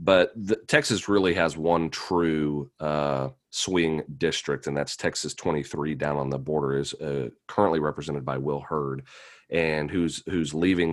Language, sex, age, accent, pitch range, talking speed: English, male, 40-59, American, 75-85 Hz, 160 wpm